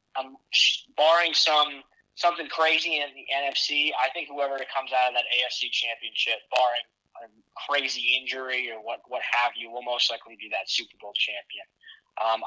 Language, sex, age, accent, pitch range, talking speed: English, male, 20-39, American, 120-150 Hz, 175 wpm